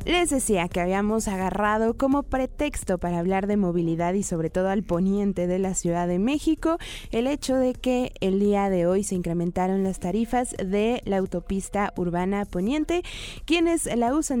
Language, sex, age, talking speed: Spanish, female, 20-39, 170 wpm